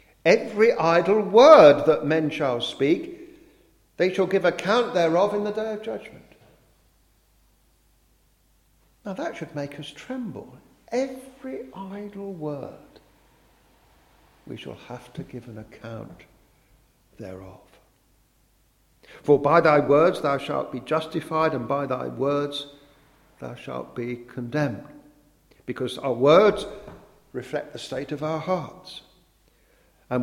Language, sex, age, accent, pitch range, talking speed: English, male, 50-69, British, 130-175 Hz, 120 wpm